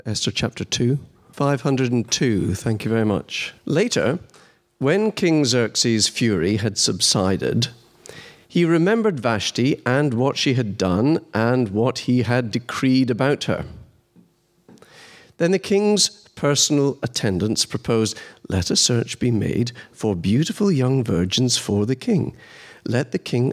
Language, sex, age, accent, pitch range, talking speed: English, male, 50-69, British, 115-145 Hz, 130 wpm